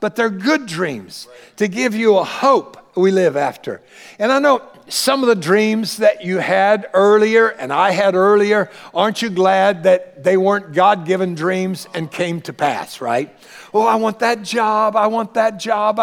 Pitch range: 180-235 Hz